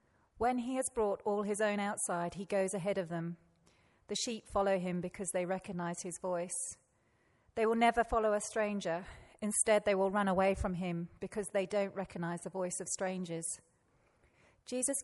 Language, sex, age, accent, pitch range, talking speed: English, female, 40-59, British, 180-220 Hz, 175 wpm